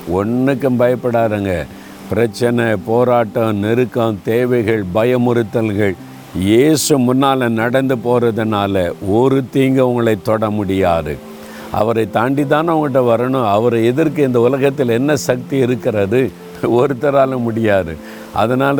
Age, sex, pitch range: 50-69, male, 100-135 Hz